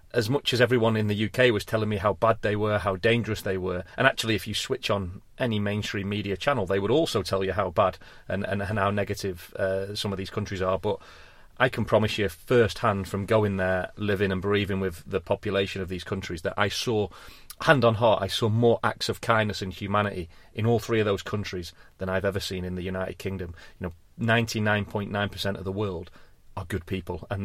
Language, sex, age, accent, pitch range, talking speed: English, male, 30-49, British, 95-110 Hz, 225 wpm